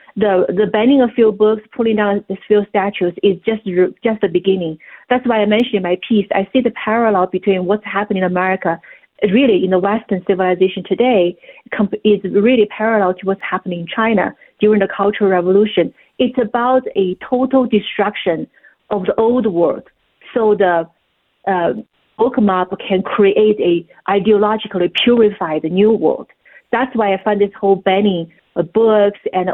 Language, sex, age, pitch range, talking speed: English, female, 40-59, 190-225 Hz, 165 wpm